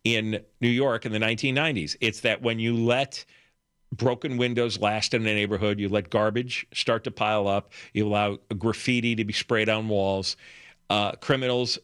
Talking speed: 170 wpm